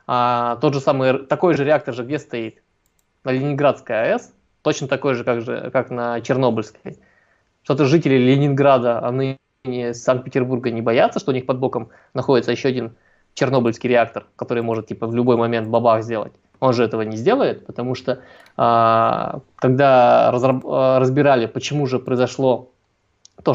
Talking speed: 150 wpm